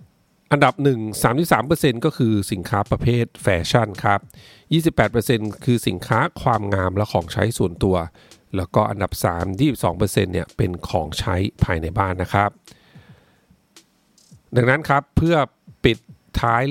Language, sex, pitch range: Thai, male, 100-125 Hz